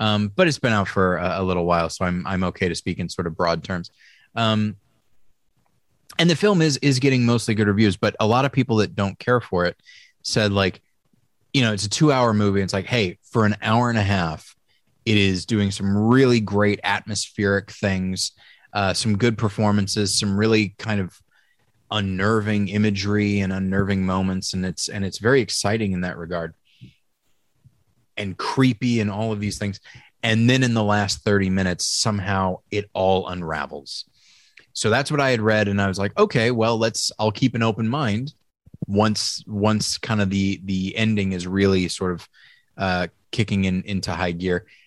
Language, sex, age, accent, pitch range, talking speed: English, male, 20-39, American, 95-115 Hz, 190 wpm